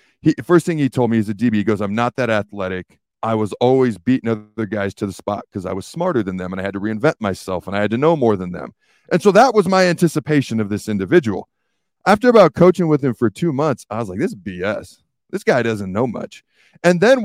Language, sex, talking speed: English, male, 255 wpm